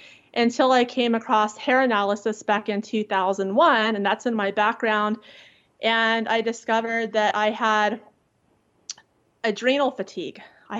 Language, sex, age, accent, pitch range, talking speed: English, female, 30-49, American, 215-245 Hz, 130 wpm